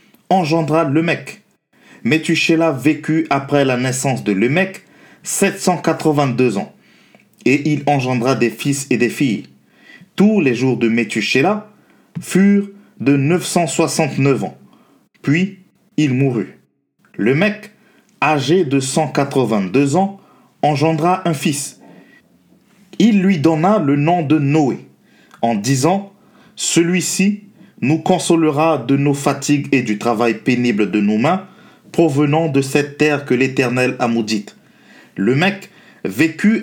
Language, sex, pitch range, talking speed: French, male, 130-175 Hz, 120 wpm